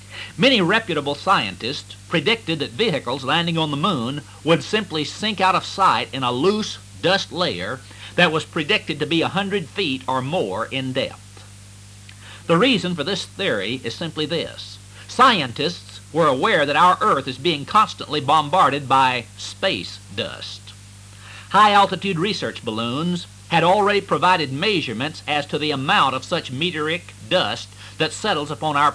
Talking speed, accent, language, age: 150 wpm, American, English, 60-79